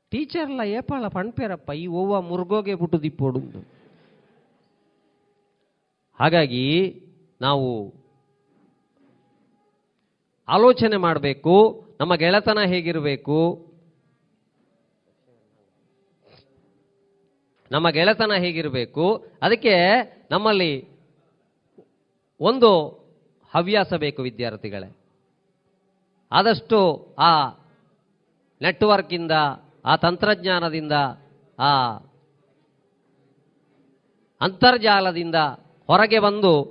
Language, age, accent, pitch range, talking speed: Kannada, 40-59, native, 150-200 Hz, 55 wpm